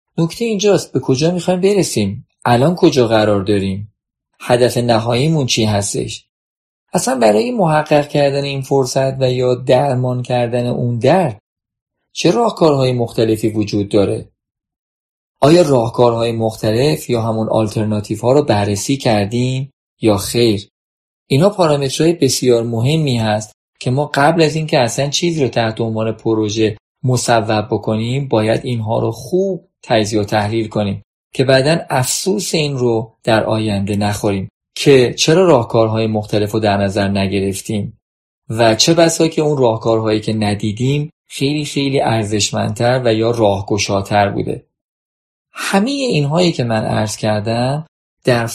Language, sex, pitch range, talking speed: Persian, male, 110-145 Hz, 130 wpm